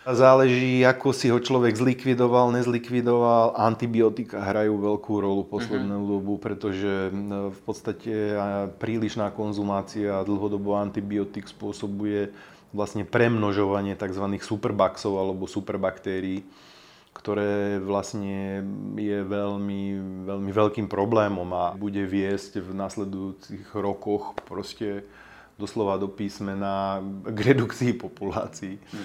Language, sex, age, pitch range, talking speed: Slovak, male, 30-49, 100-110 Hz, 100 wpm